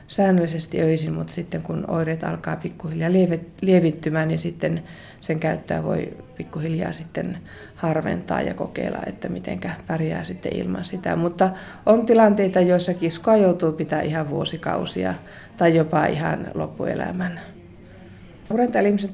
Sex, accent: female, native